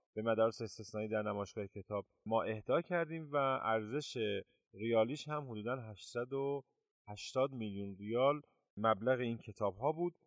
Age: 30-49